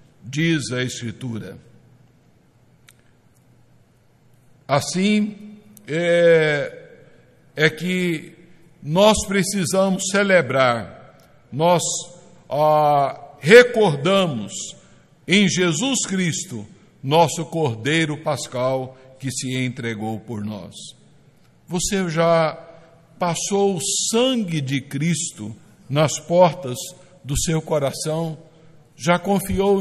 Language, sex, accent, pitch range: Portuguese, male, Brazilian, 145-190 Hz